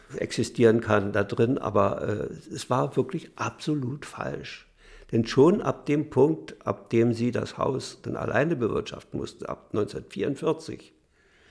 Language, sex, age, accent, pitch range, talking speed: German, male, 60-79, German, 110-135 Hz, 140 wpm